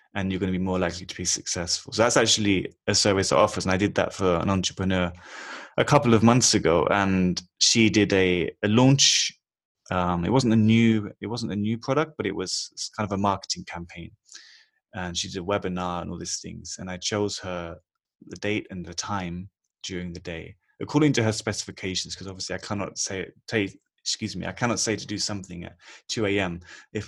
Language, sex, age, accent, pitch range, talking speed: English, male, 20-39, British, 90-110 Hz, 215 wpm